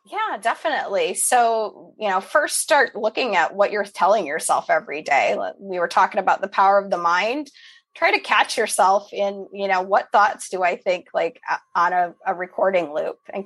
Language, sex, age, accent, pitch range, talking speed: English, female, 20-39, American, 190-265 Hz, 190 wpm